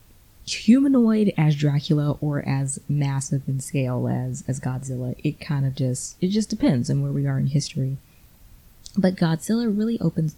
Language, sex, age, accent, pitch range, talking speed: English, female, 20-39, American, 140-170 Hz, 160 wpm